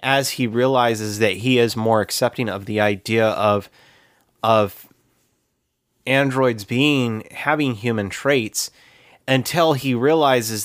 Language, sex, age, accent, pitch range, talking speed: English, male, 30-49, American, 105-130 Hz, 120 wpm